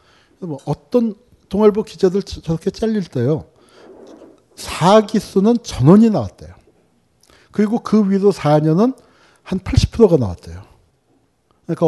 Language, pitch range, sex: Korean, 130-195 Hz, male